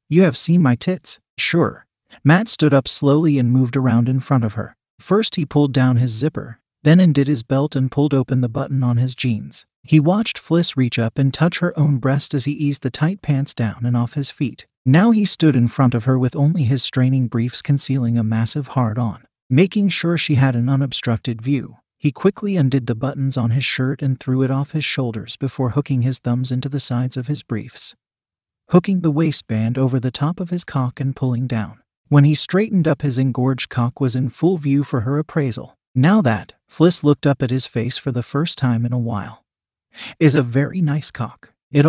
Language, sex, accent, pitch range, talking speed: English, male, American, 125-150 Hz, 215 wpm